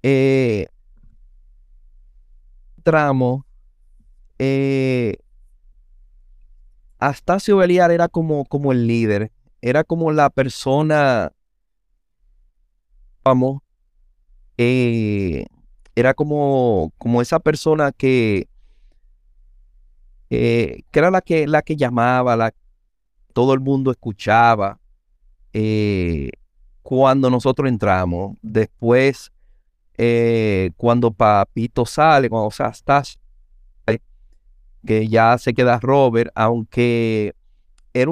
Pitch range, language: 90-140 Hz, Spanish